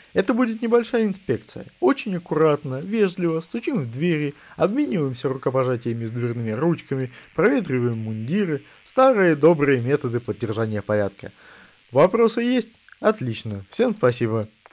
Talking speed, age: 110 wpm, 20-39